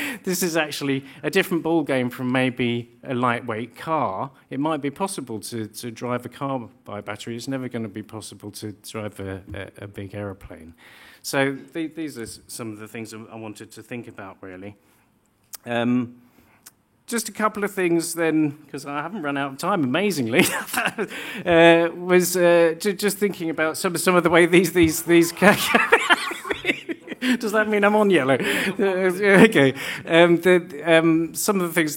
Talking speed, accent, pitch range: 180 wpm, British, 110-165 Hz